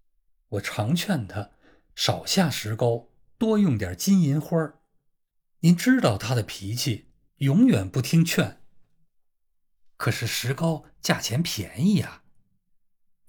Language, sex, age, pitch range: Chinese, male, 50-69, 100-160 Hz